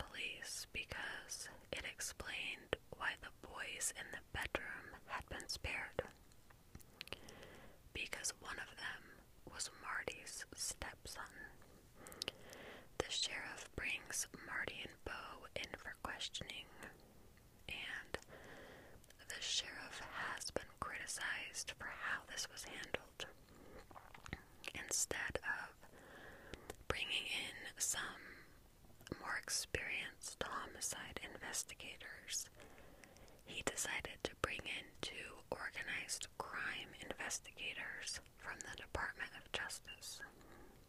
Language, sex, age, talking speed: English, female, 20-39, 90 wpm